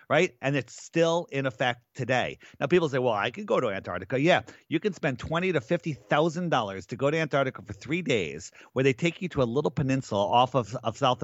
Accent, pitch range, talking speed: American, 115-145 Hz, 225 wpm